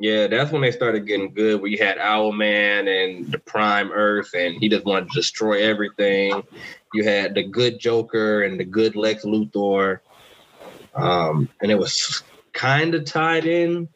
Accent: American